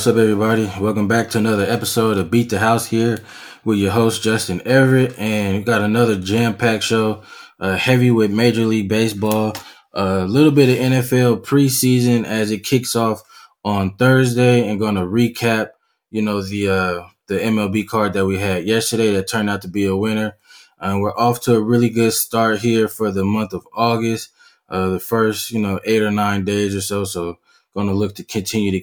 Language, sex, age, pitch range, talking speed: English, male, 20-39, 100-115 Hz, 200 wpm